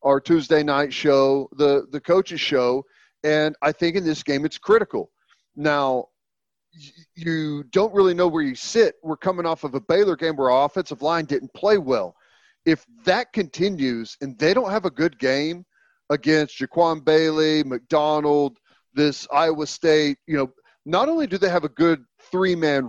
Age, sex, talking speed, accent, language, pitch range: 40-59, male, 175 wpm, American, English, 135-165 Hz